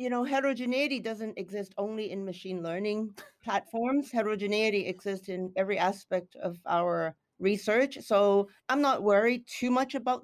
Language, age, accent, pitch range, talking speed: English, 40-59, American, 190-235 Hz, 145 wpm